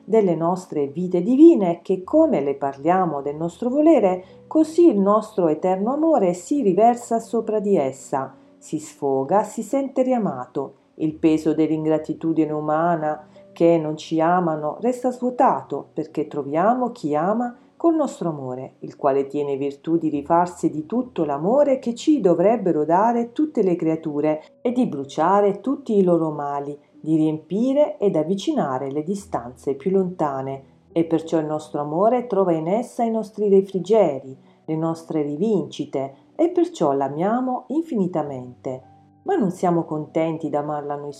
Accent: native